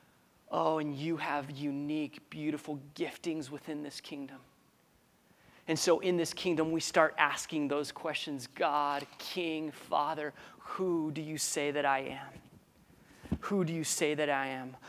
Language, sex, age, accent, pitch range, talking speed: English, male, 30-49, American, 140-155 Hz, 150 wpm